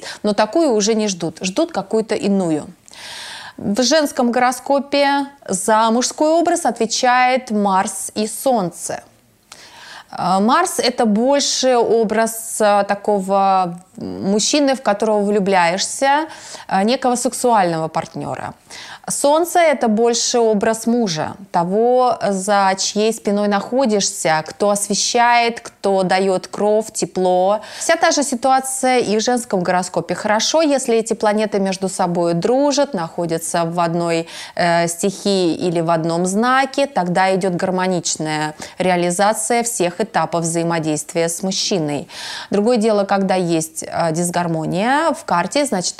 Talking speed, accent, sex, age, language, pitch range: 115 wpm, native, female, 30-49, Russian, 180-245 Hz